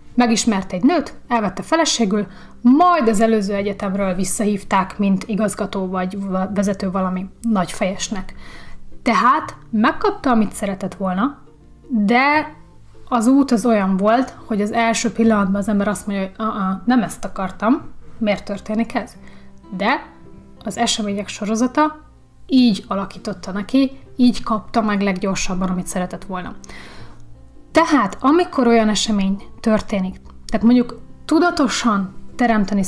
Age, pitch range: 30-49, 195-235 Hz